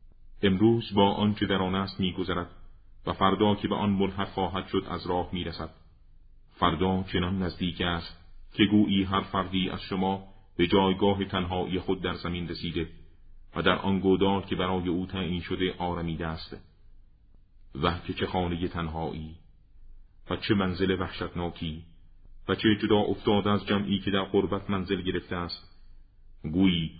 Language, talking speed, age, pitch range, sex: Persian, 150 wpm, 40-59, 85-100 Hz, male